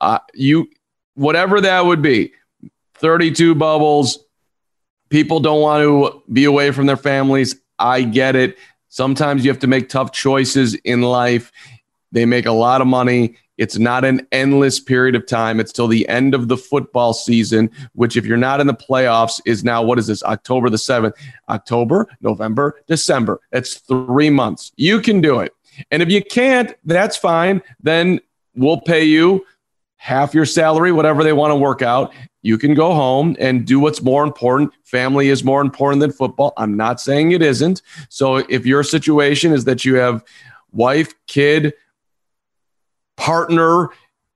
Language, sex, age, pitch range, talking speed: English, male, 40-59, 125-155 Hz, 170 wpm